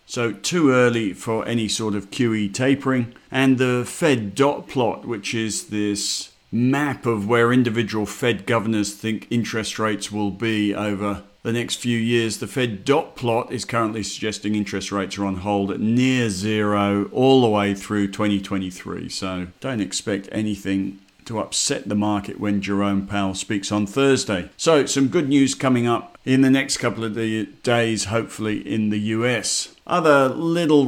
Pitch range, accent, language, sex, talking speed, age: 105-125 Hz, British, English, male, 165 wpm, 50-69